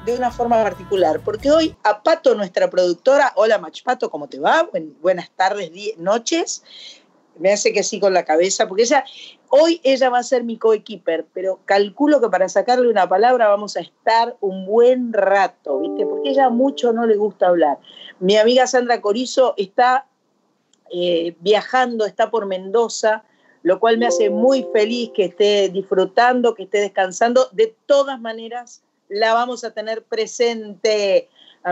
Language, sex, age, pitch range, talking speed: Spanish, female, 40-59, 190-250 Hz, 165 wpm